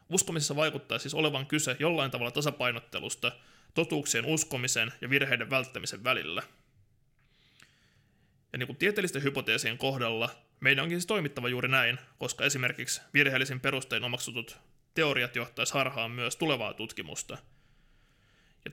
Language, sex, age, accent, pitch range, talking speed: Finnish, male, 20-39, native, 125-145 Hz, 120 wpm